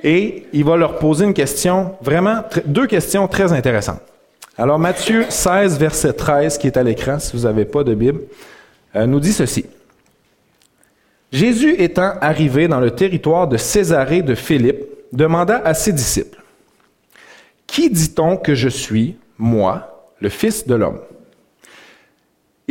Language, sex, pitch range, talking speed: French, male, 115-175 Hz, 155 wpm